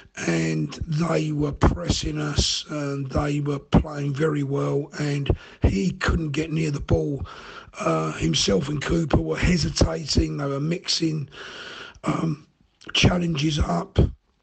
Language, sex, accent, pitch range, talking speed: English, male, British, 145-185 Hz, 125 wpm